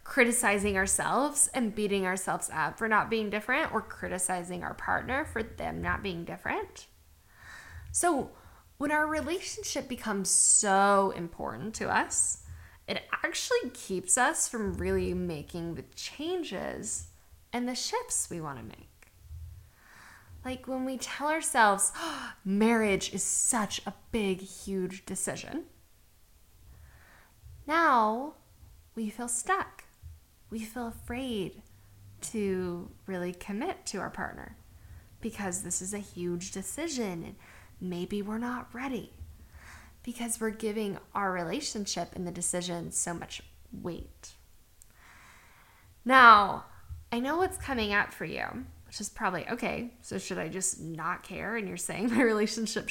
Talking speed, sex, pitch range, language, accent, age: 130 wpm, female, 175-240 Hz, English, American, 10-29